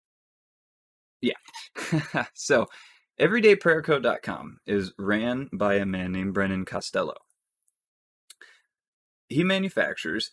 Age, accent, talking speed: 20-39, American, 75 wpm